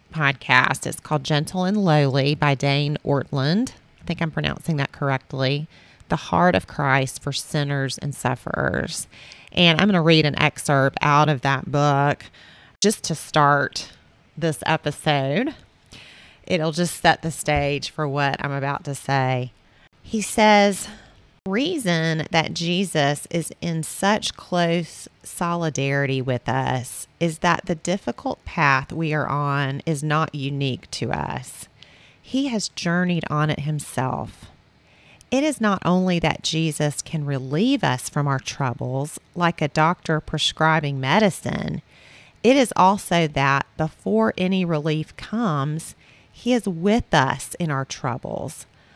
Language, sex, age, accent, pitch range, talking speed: English, female, 30-49, American, 140-175 Hz, 140 wpm